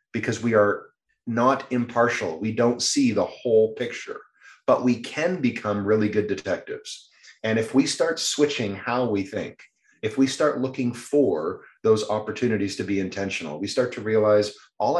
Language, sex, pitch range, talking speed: English, male, 110-150 Hz, 165 wpm